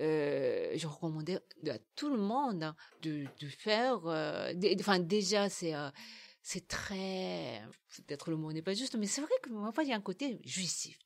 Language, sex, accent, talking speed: French, female, French, 185 wpm